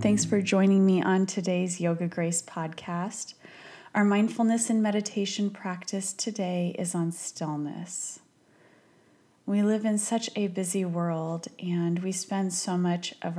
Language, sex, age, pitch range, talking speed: English, female, 30-49, 165-195 Hz, 140 wpm